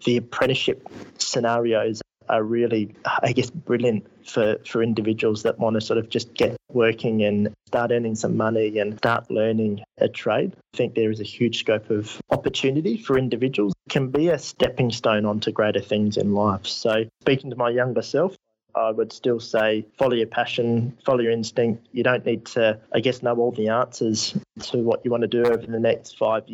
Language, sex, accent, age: English, male, Australian, 20-39